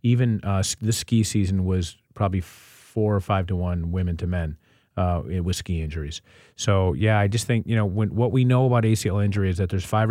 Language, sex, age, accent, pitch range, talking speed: English, male, 40-59, American, 95-110 Hz, 215 wpm